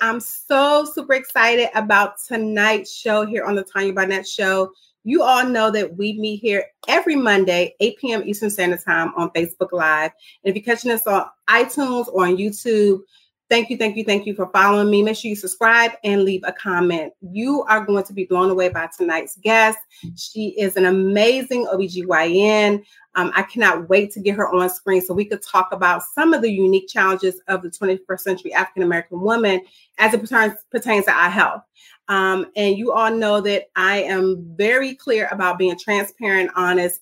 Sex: female